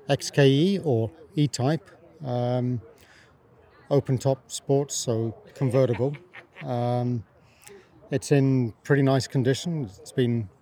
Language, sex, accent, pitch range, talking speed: English, male, British, 120-140 Hz, 90 wpm